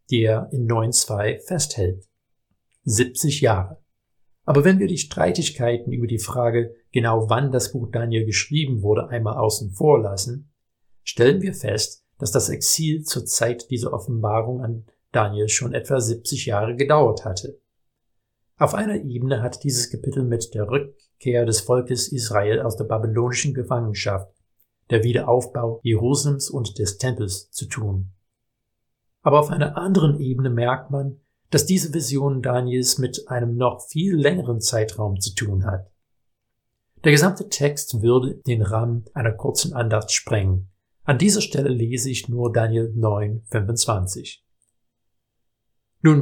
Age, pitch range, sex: 50-69, 110-140 Hz, male